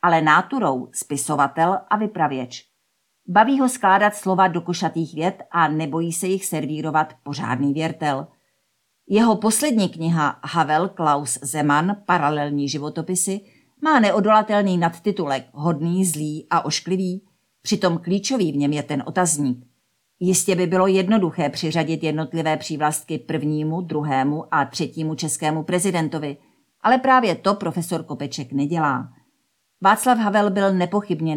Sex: female